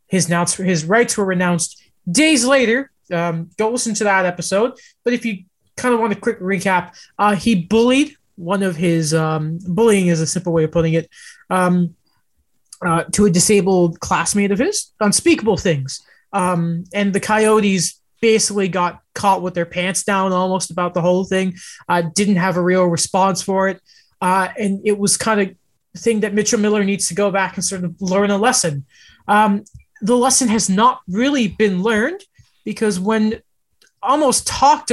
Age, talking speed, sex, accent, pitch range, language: 20-39, 175 wpm, male, American, 180-225 Hz, English